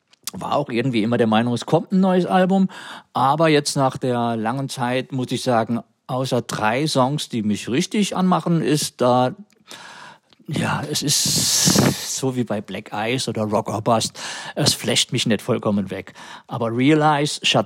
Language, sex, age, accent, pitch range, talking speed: German, male, 50-69, German, 115-145 Hz, 170 wpm